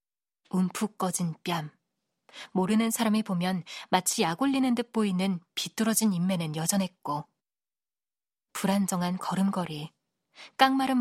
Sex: female